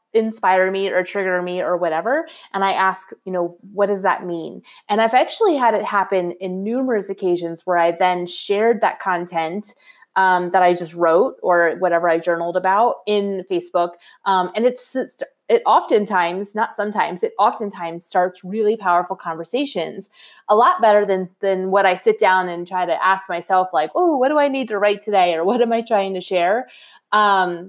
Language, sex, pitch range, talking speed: English, female, 175-215 Hz, 190 wpm